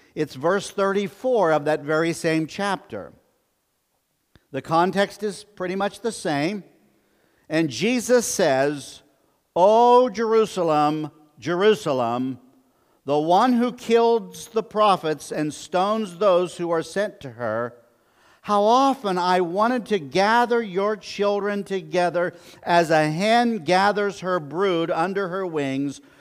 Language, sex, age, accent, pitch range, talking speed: English, male, 50-69, American, 135-195 Hz, 120 wpm